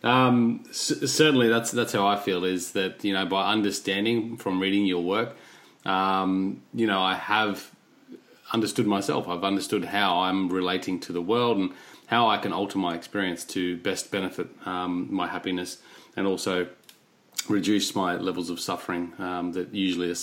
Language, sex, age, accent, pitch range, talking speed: English, male, 30-49, Australian, 90-105 Hz, 165 wpm